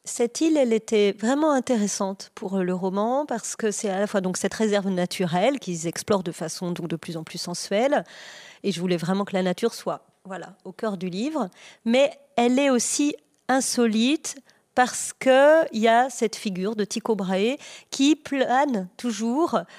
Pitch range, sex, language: 200-255 Hz, female, French